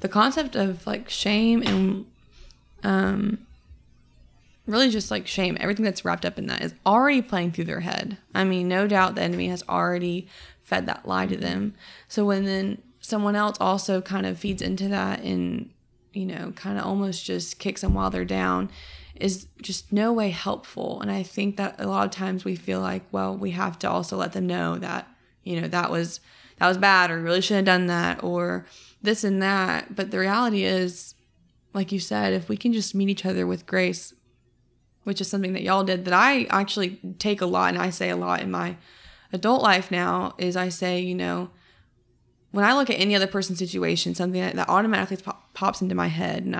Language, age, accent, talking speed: English, 20-39, American, 205 wpm